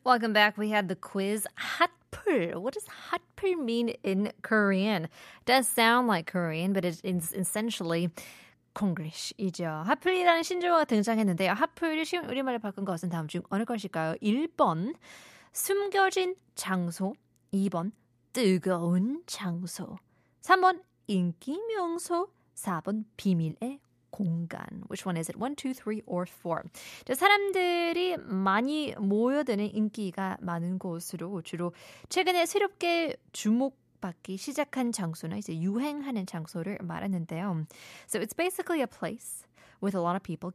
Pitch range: 175-255 Hz